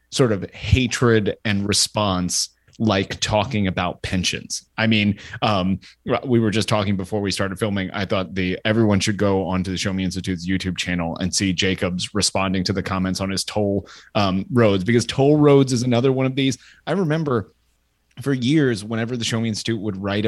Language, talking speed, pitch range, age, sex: English, 190 wpm, 95-120 Hz, 30-49, male